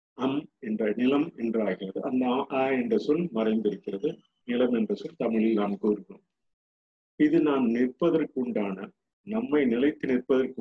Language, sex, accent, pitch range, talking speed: Tamil, male, native, 110-150 Hz, 115 wpm